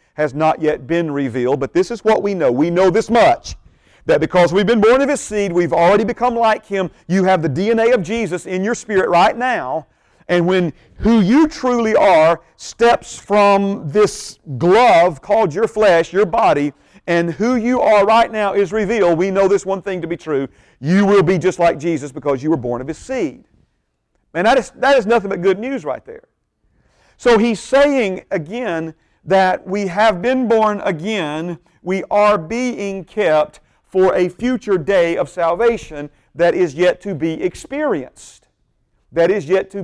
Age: 40-59